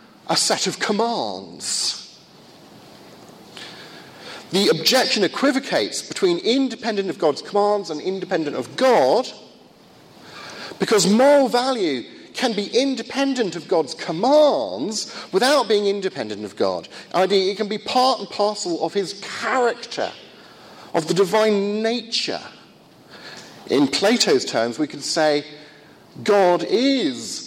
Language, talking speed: English, 110 wpm